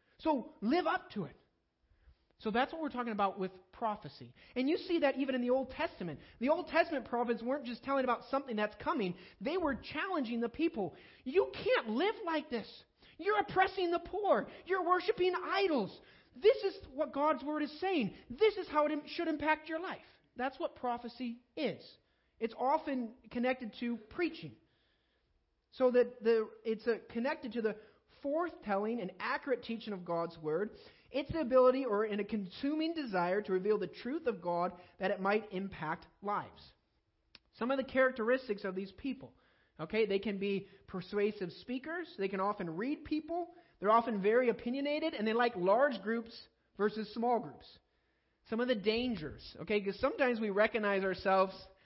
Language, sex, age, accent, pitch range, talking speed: English, male, 30-49, American, 205-300 Hz, 170 wpm